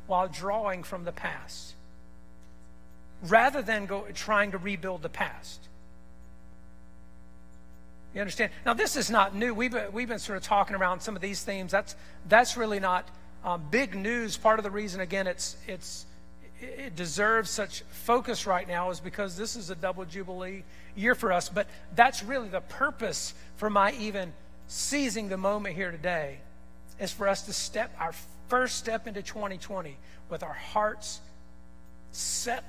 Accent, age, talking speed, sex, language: American, 50-69, 170 wpm, male, English